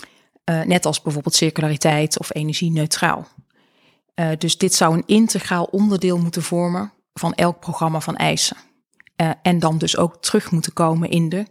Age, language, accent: 20-39, Dutch, Dutch